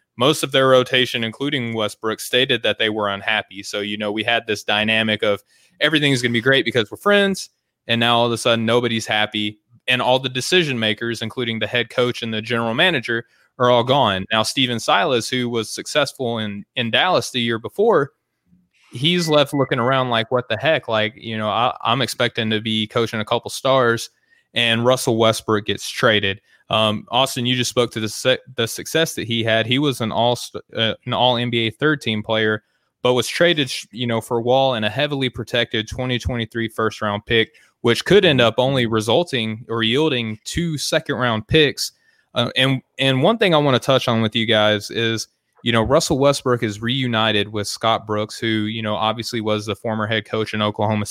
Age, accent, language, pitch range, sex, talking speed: 20-39, American, English, 110-130 Hz, male, 200 wpm